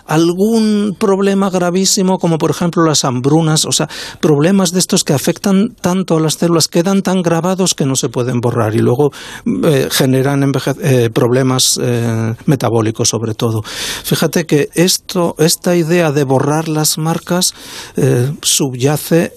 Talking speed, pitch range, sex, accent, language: 150 wpm, 130-165 Hz, male, Spanish, Spanish